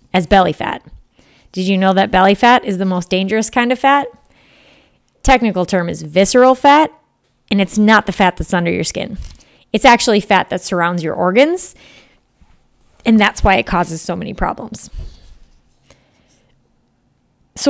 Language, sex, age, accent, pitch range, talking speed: English, female, 30-49, American, 180-235 Hz, 155 wpm